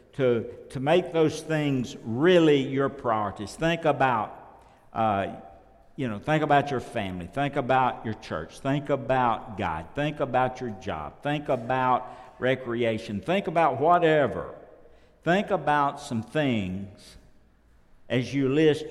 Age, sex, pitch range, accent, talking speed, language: 60-79, male, 120-160 Hz, American, 130 wpm, English